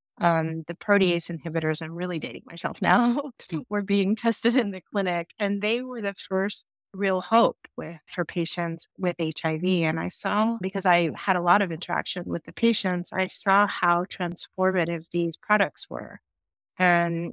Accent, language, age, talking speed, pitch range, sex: American, English, 30-49, 165 wpm, 165-190 Hz, female